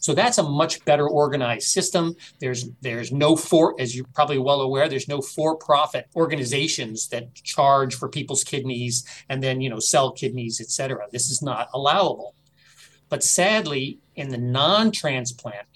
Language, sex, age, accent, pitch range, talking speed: English, male, 40-59, American, 125-150 Hz, 160 wpm